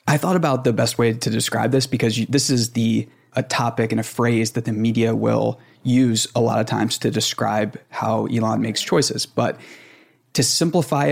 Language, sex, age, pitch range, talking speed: English, male, 20-39, 115-130 Hz, 200 wpm